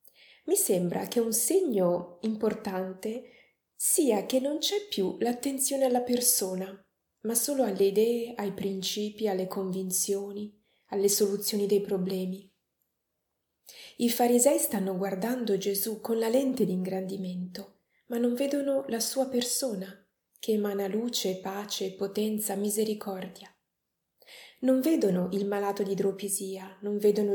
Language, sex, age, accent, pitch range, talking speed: Italian, female, 30-49, native, 195-235 Hz, 120 wpm